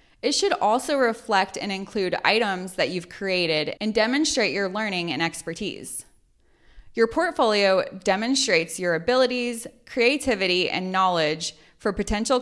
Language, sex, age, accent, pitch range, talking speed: English, female, 20-39, American, 175-240 Hz, 125 wpm